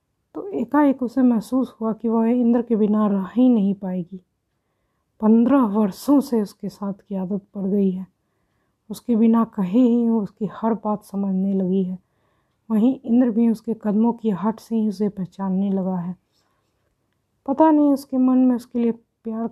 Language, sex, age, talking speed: Hindi, female, 20-39, 170 wpm